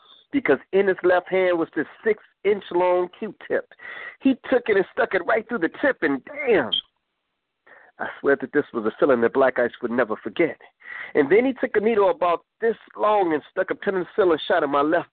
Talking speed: 200 wpm